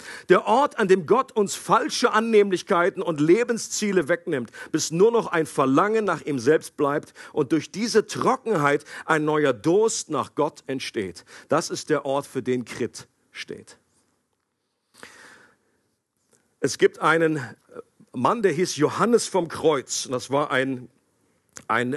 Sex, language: male, German